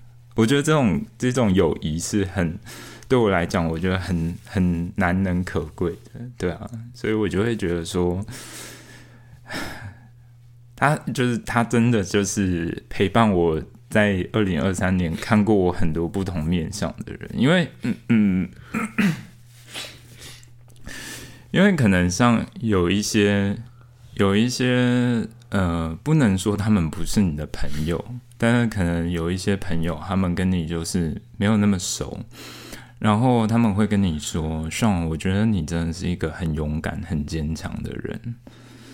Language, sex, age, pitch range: Chinese, male, 20-39, 85-115 Hz